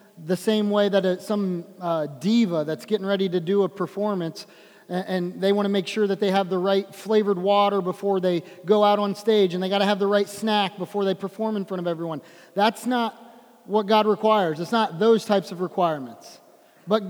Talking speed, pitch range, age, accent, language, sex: 205 wpm, 185-230 Hz, 30-49, American, English, male